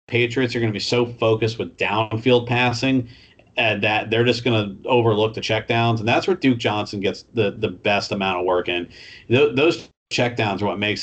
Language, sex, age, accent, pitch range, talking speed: English, male, 40-59, American, 100-120 Hz, 205 wpm